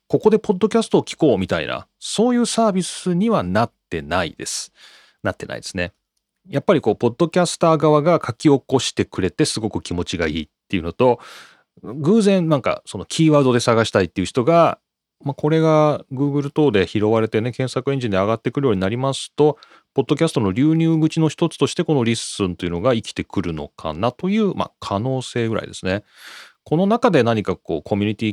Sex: male